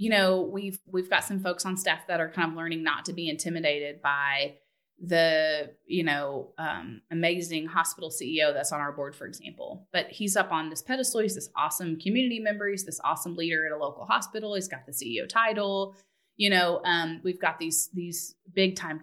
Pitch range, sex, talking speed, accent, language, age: 165-205 Hz, female, 205 wpm, American, English, 30-49